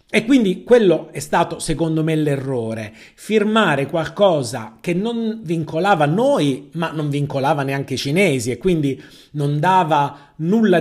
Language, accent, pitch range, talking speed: Italian, native, 140-180 Hz, 140 wpm